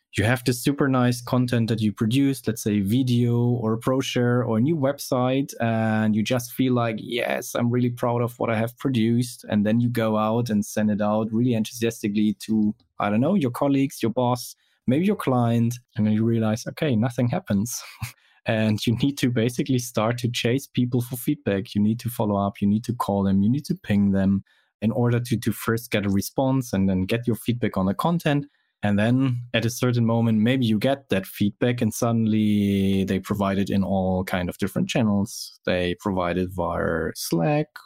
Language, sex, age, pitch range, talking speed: English, male, 20-39, 105-125 Hz, 210 wpm